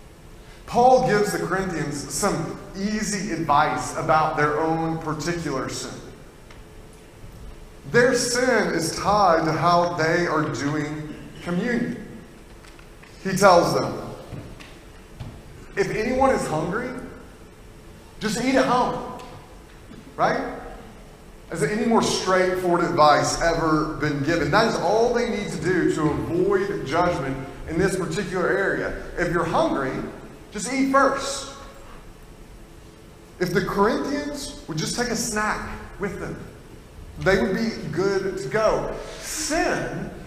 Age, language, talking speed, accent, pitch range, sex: 30-49, English, 120 wpm, American, 155-215 Hz, male